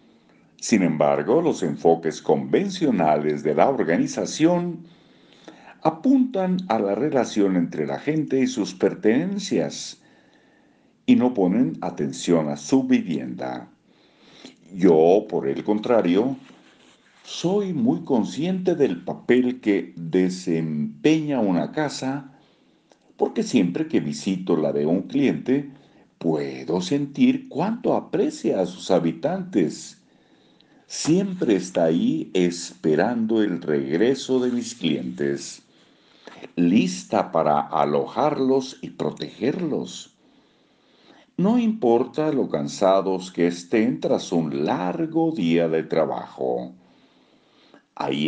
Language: Spanish